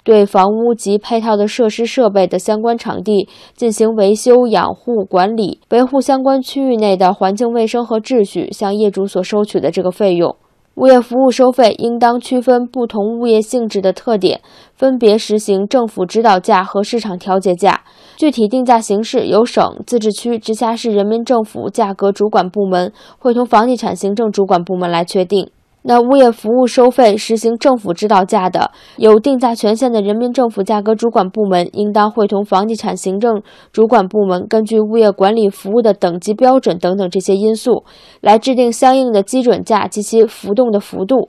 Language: Chinese